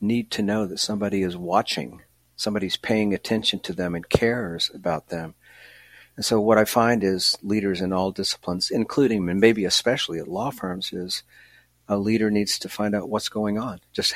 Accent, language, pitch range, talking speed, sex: American, English, 95-115 Hz, 185 wpm, male